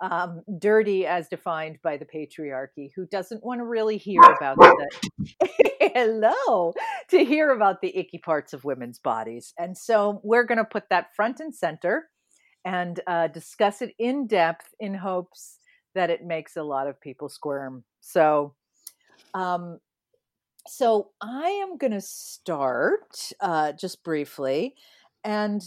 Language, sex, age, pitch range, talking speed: English, female, 40-59, 155-215 Hz, 145 wpm